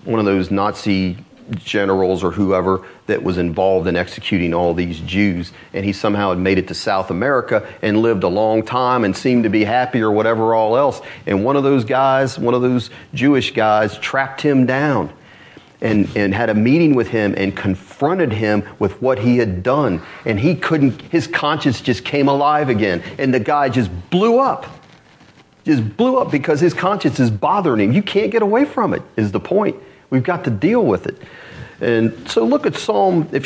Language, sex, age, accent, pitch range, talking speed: English, male, 40-59, American, 110-165 Hz, 200 wpm